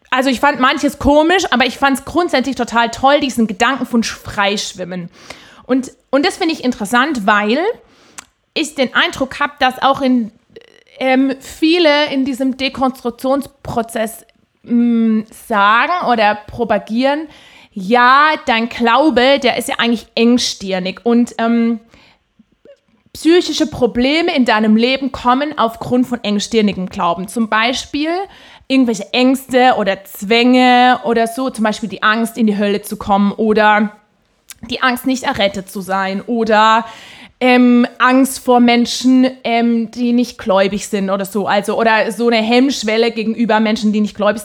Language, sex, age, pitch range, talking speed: English, female, 30-49, 225-270 Hz, 145 wpm